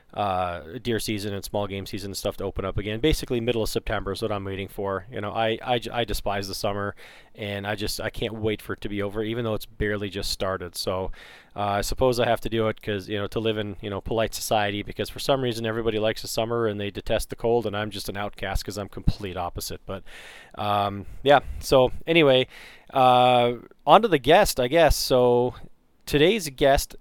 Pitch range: 105-125 Hz